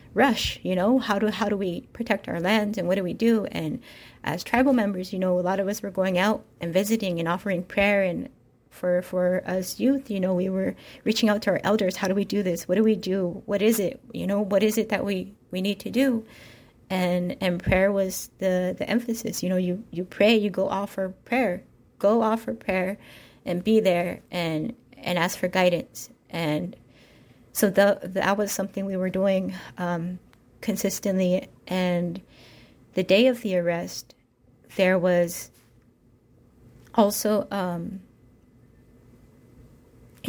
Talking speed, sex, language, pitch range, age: 175 wpm, female, English, 175-200 Hz, 30-49